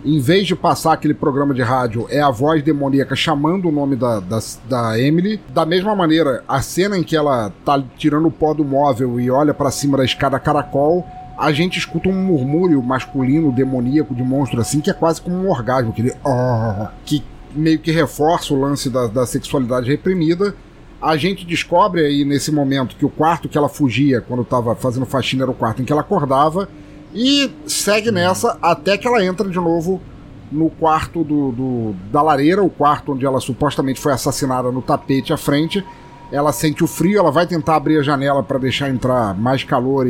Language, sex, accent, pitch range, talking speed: Portuguese, male, Brazilian, 130-165 Hz, 195 wpm